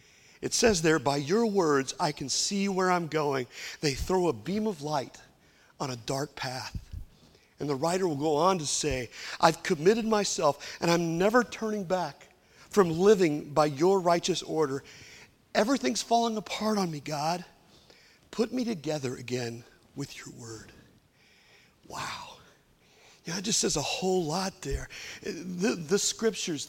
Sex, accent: male, American